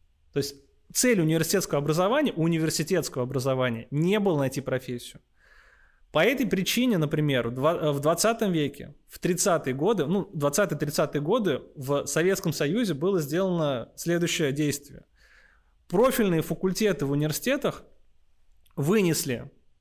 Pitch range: 145-195 Hz